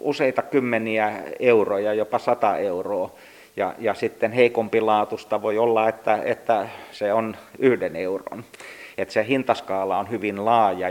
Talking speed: 140 wpm